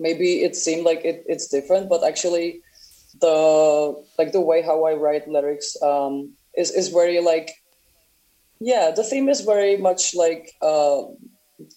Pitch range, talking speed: 140-165 Hz, 155 wpm